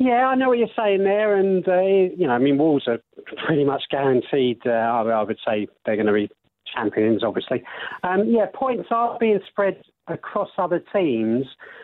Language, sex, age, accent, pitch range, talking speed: English, male, 40-59, British, 130-170 Hz, 190 wpm